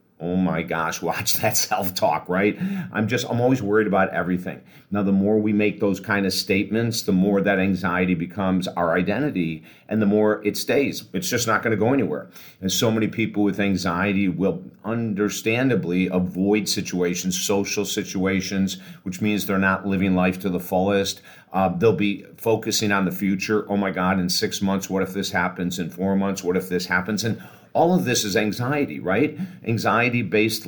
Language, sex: English, male